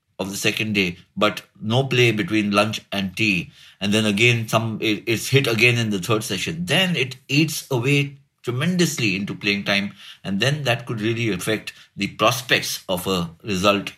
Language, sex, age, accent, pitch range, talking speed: English, male, 60-79, Indian, 100-140 Hz, 175 wpm